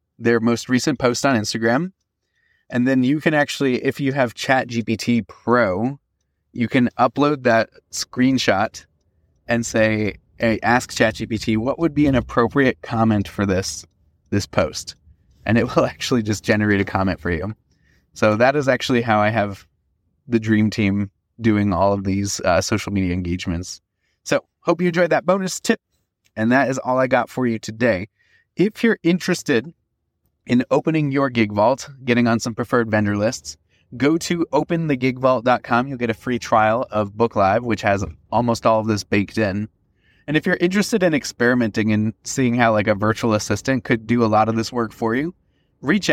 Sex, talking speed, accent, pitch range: male, 175 wpm, American, 100-130 Hz